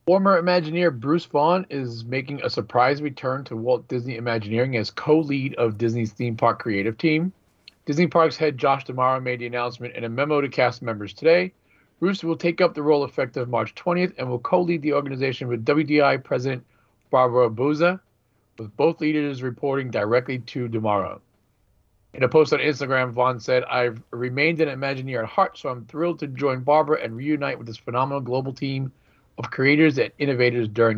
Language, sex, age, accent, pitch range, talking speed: English, male, 40-59, American, 115-150 Hz, 180 wpm